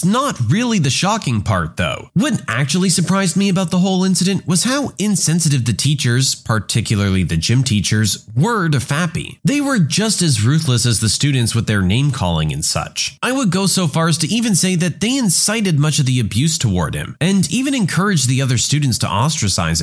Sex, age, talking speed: male, 30-49, 195 wpm